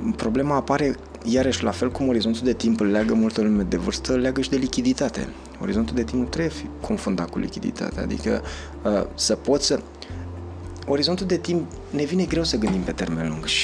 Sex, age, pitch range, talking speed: male, 30-49, 90-125 Hz, 190 wpm